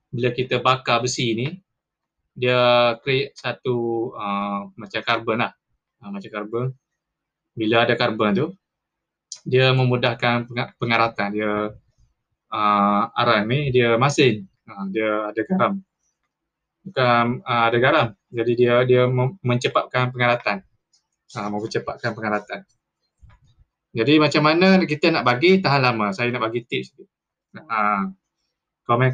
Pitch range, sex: 110-135 Hz, male